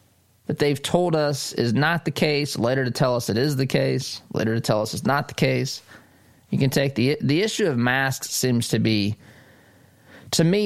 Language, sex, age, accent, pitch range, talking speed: English, male, 20-39, American, 110-130 Hz, 210 wpm